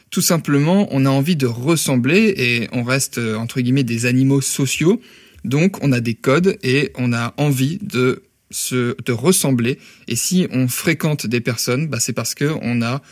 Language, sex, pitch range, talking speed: French, male, 125-145 Hz, 180 wpm